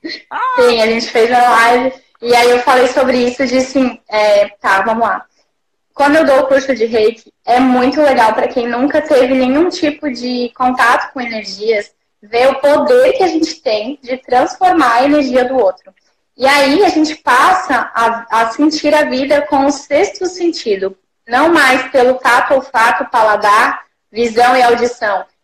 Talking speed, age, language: 175 wpm, 10-29, Portuguese